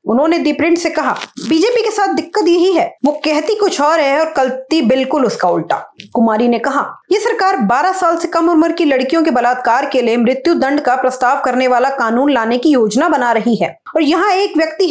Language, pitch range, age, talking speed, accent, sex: English, 255-340 Hz, 30-49, 215 wpm, Indian, female